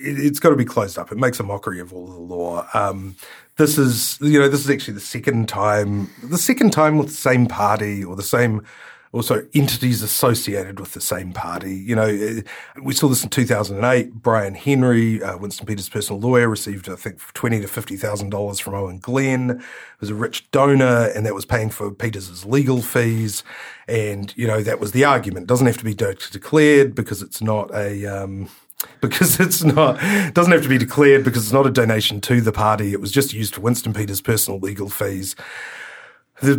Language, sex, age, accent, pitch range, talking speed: English, male, 30-49, Australian, 100-130 Hz, 215 wpm